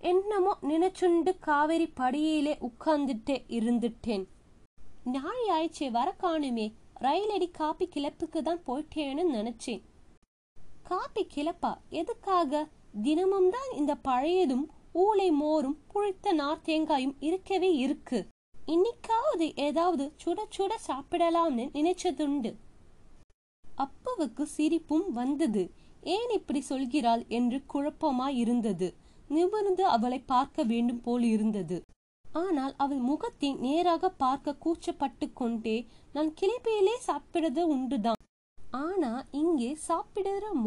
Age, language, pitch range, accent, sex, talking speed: 20-39, Tamil, 260-345 Hz, native, female, 75 wpm